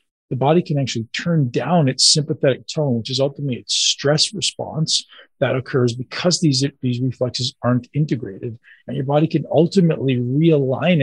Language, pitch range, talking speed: English, 120-150 Hz, 160 wpm